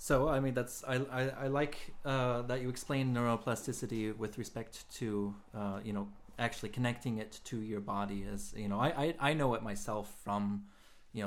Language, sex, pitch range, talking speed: English, male, 105-125 Hz, 190 wpm